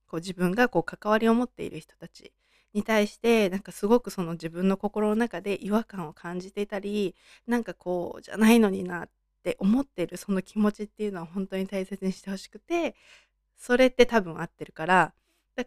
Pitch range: 175-225 Hz